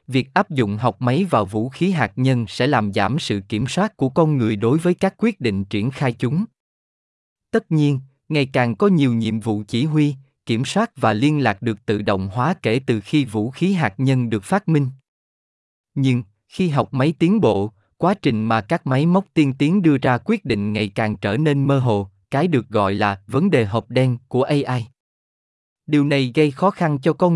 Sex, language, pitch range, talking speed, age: male, Vietnamese, 110-160 Hz, 215 wpm, 20-39